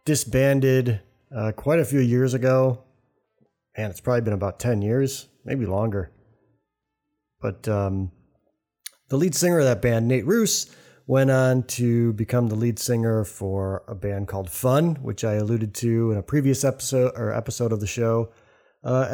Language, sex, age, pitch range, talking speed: English, male, 30-49, 110-140 Hz, 165 wpm